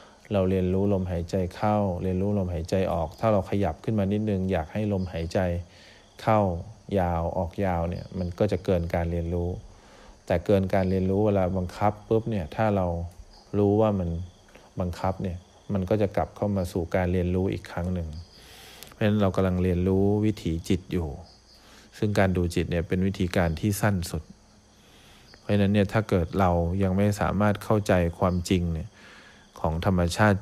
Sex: male